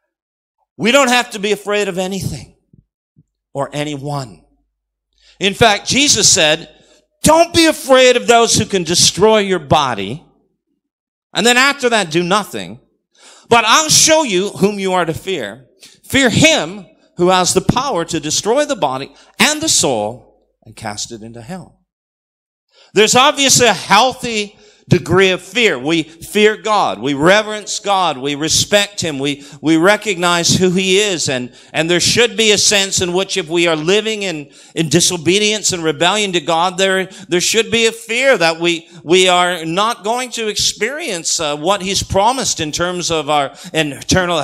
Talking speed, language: 165 wpm, English